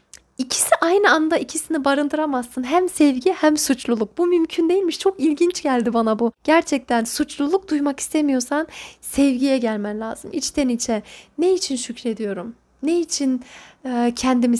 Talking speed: 130 wpm